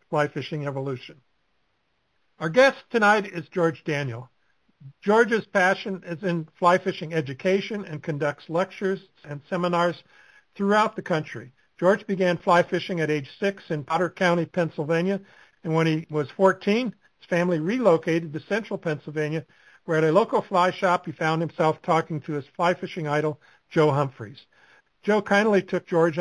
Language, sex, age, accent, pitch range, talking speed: English, male, 60-79, American, 155-190 Hz, 155 wpm